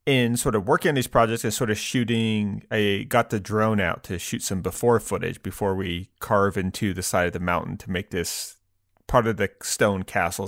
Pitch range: 95-125 Hz